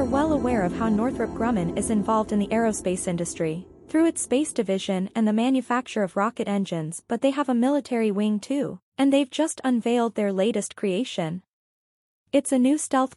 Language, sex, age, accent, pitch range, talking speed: English, female, 20-39, American, 195-255 Hz, 180 wpm